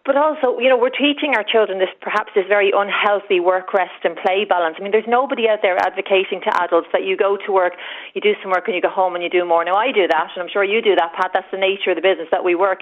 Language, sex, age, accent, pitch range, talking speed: English, female, 40-59, Irish, 180-215 Hz, 300 wpm